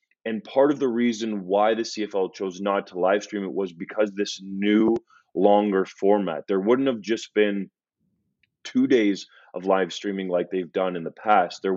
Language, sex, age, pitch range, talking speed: English, male, 20-39, 95-110 Hz, 190 wpm